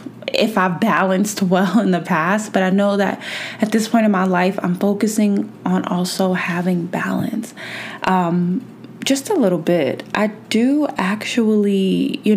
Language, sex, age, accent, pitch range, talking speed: English, female, 20-39, American, 180-210 Hz, 155 wpm